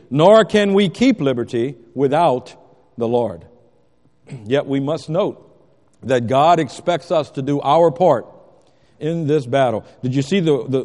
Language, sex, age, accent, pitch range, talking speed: English, male, 50-69, American, 105-150 Hz, 155 wpm